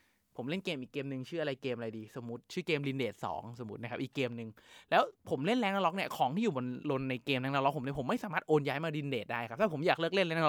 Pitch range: 135-180 Hz